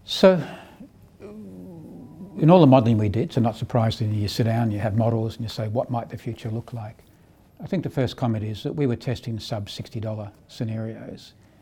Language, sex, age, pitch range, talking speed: English, male, 60-79, 110-130 Hz, 195 wpm